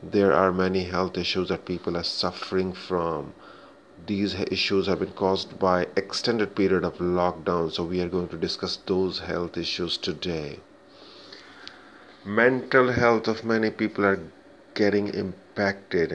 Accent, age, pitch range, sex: native, 30-49, 90-100 Hz, male